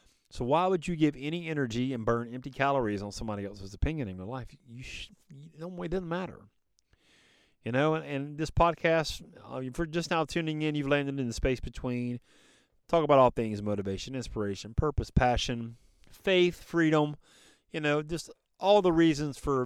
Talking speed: 185 wpm